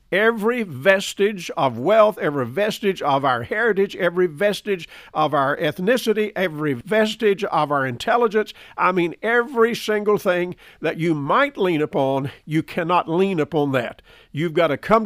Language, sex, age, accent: English, male, 50-69, American